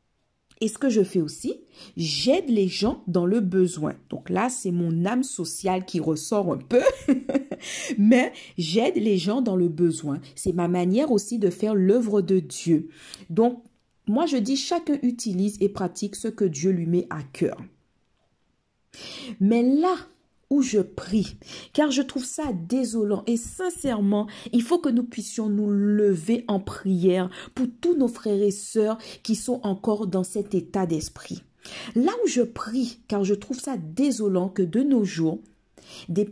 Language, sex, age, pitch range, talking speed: French, female, 50-69, 185-260 Hz, 165 wpm